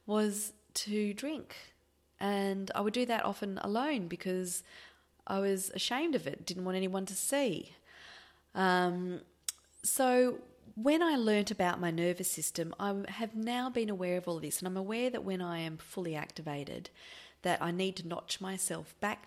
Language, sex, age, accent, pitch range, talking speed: English, female, 30-49, Australian, 165-215 Hz, 170 wpm